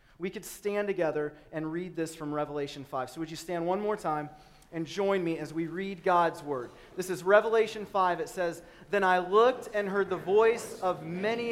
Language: English